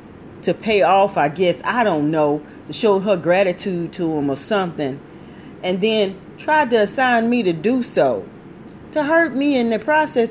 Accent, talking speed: American, 180 wpm